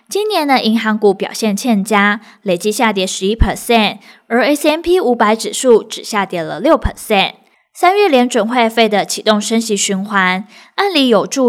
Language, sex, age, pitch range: Chinese, female, 20-39, 195-255 Hz